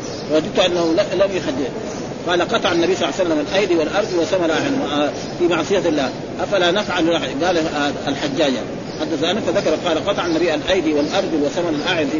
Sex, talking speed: male, 155 wpm